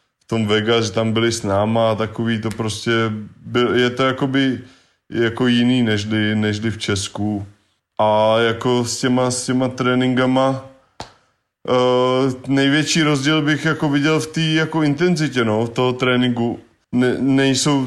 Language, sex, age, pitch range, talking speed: Czech, male, 20-39, 105-125 Hz, 150 wpm